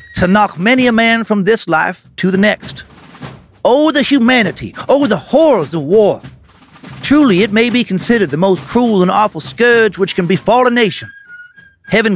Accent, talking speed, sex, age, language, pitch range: American, 180 wpm, male, 40-59, English, 185-240 Hz